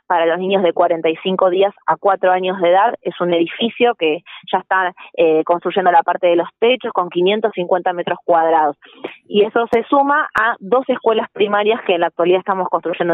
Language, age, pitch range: Spanish, 20-39, 180-215 Hz